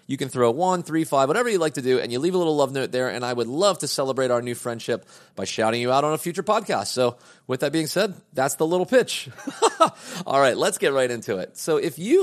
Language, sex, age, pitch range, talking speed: English, male, 30-49, 120-170 Hz, 275 wpm